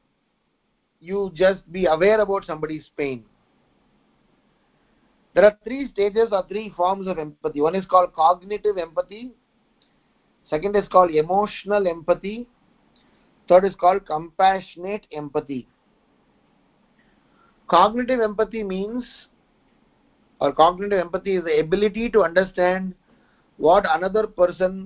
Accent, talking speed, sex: Indian, 110 wpm, male